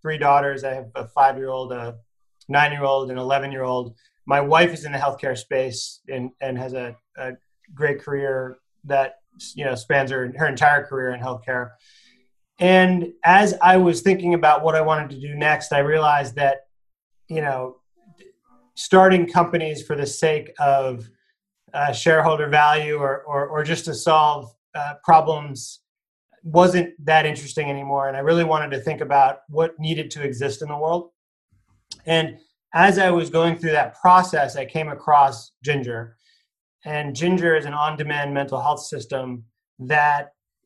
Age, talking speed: 30-49, 160 wpm